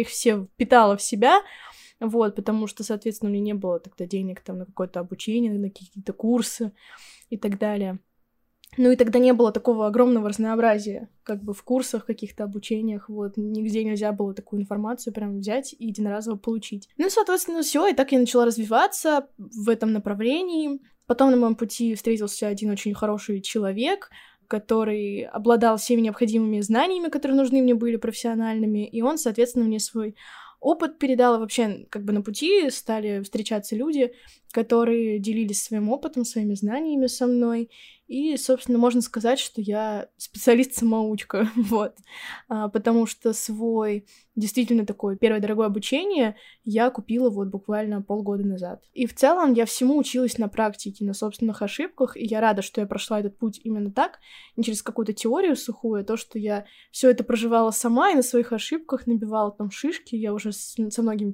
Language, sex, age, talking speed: Russian, female, 10-29, 165 wpm